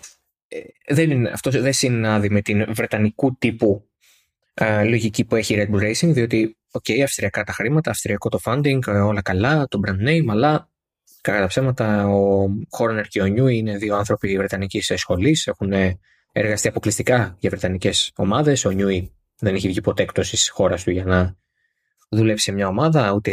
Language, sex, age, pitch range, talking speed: Greek, male, 20-39, 100-130 Hz, 170 wpm